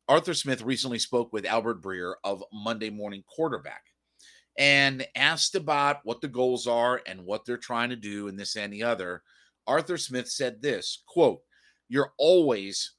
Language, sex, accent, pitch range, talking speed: English, male, American, 115-140 Hz, 165 wpm